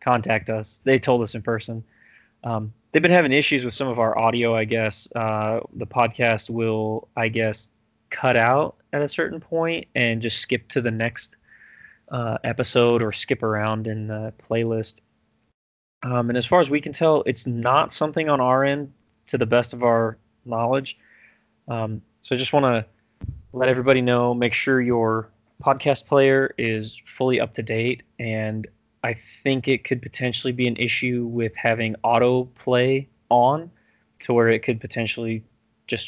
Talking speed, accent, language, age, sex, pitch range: 170 wpm, American, English, 20-39, male, 110-130 Hz